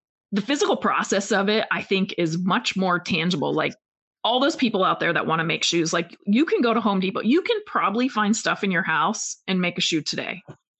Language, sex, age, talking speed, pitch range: English, female, 30-49, 235 wpm, 200-260 Hz